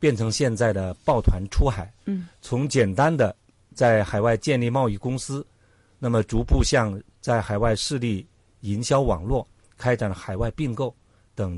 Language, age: Chinese, 50-69